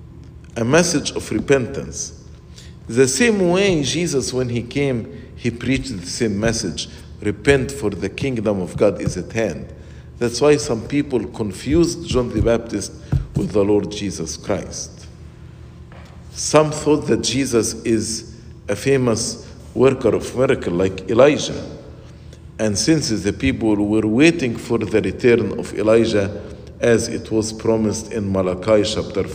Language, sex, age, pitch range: English, male, 50-69, 100-135 Hz